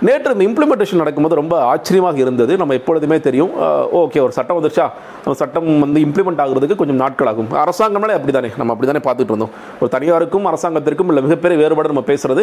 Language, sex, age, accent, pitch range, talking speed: Tamil, male, 40-59, native, 130-175 Hz, 175 wpm